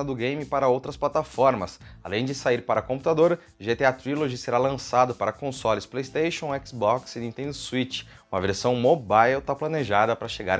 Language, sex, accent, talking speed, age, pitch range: Portuguese, male, Brazilian, 160 wpm, 20-39, 120-160 Hz